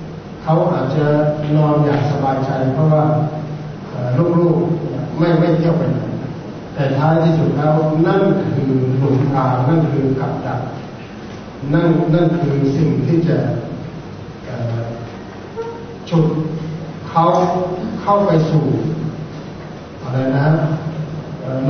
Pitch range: 140-165 Hz